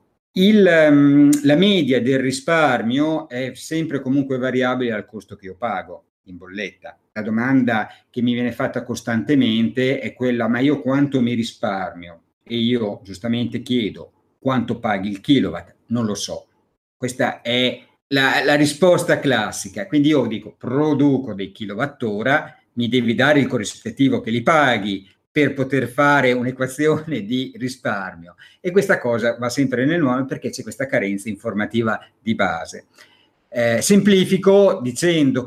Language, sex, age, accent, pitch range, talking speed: Italian, male, 50-69, native, 115-145 Hz, 140 wpm